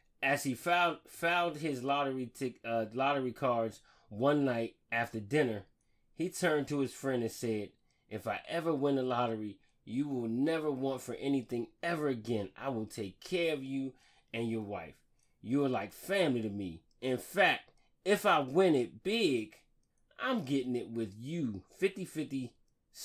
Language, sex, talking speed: English, male, 165 wpm